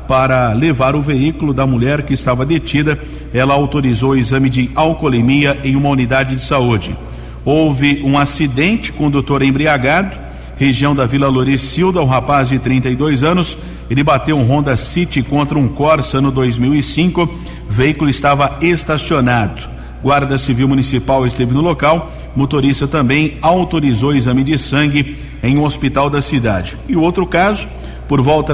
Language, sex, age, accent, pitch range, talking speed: Portuguese, male, 50-69, Brazilian, 130-150 Hz, 150 wpm